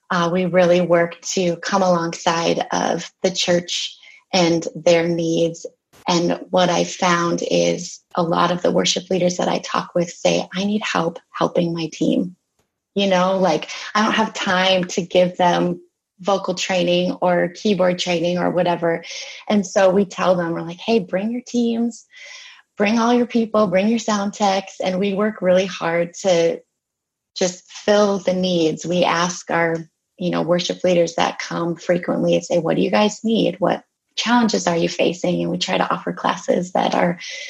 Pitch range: 175-210 Hz